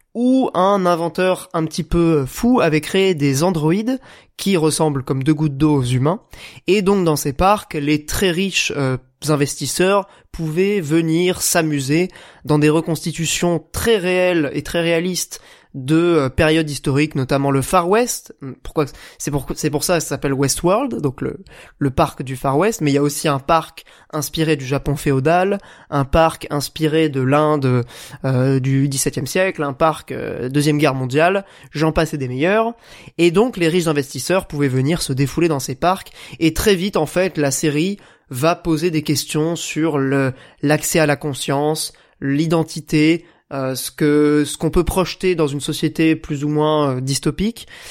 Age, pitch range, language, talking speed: 20-39, 145-180 Hz, French, 175 wpm